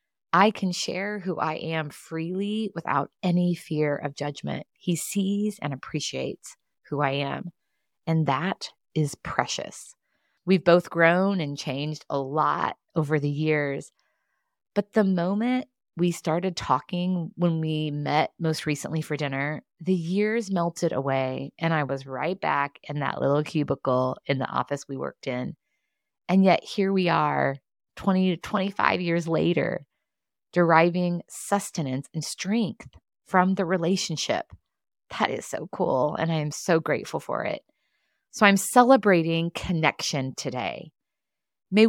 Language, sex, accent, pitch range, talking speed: English, female, American, 150-190 Hz, 140 wpm